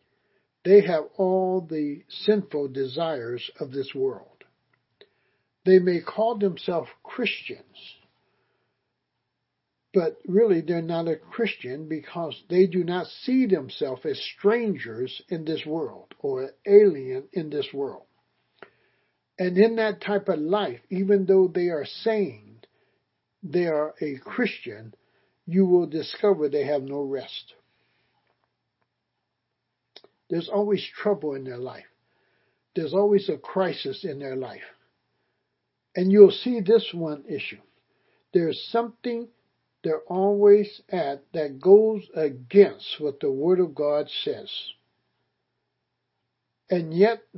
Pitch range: 155-210 Hz